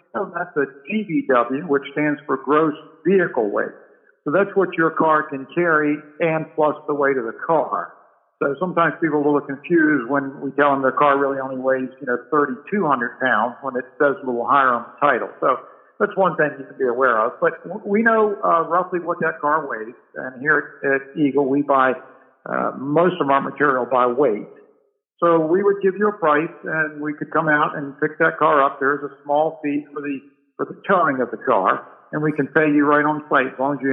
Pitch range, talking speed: 135-160 Hz, 225 wpm